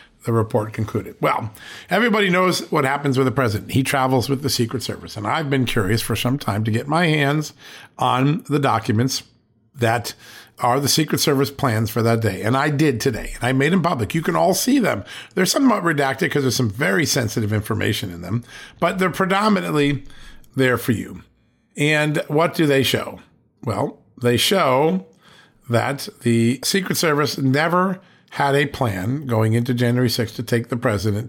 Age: 50-69